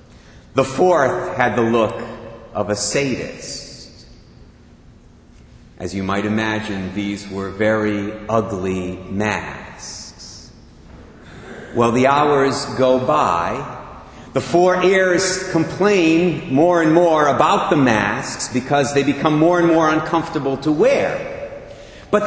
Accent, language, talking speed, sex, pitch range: American, English, 115 wpm, male, 110-175 Hz